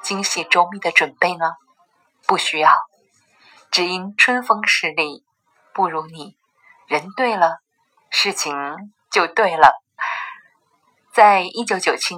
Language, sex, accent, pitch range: Chinese, female, native, 160-205 Hz